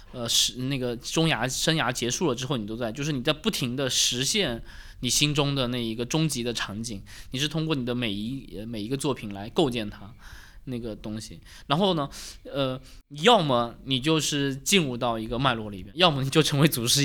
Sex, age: male, 20-39